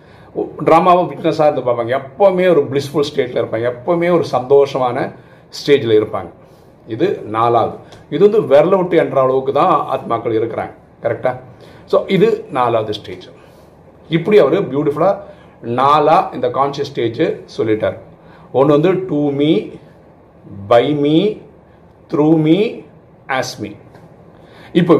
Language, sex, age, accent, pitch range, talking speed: Tamil, male, 50-69, native, 135-175 Hz, 105 wpm